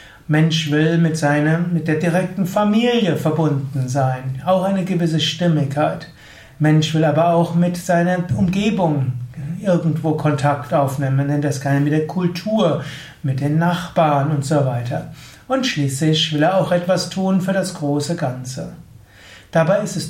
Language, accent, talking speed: German, German, 150 wpm